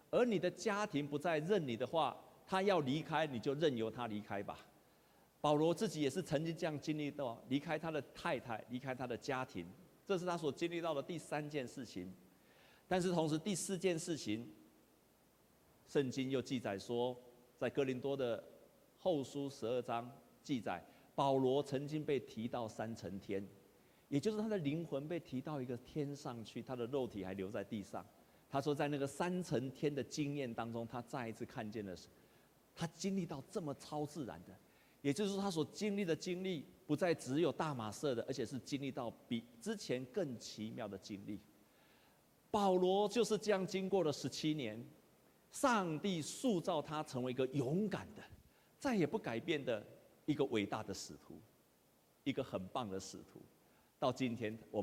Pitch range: 115-165 Hz